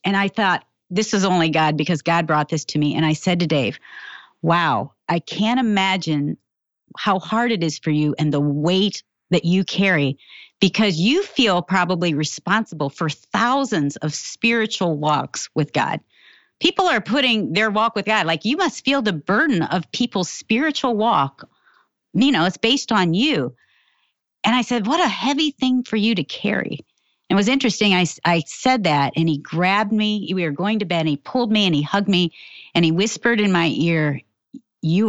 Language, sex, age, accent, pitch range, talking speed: English, female, 40-59, American, 155-220 Hz, 190 wpm